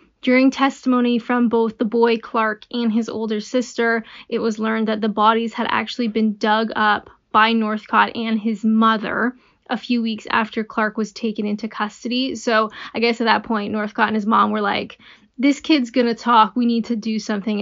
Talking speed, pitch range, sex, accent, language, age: 200 wpm, 215-235 Hz, female, American, English, 10-29